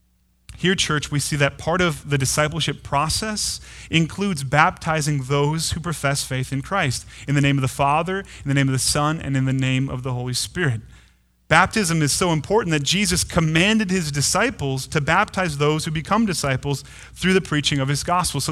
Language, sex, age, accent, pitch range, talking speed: English, male, 30-49, American, 135-175 Hz, 195 wpm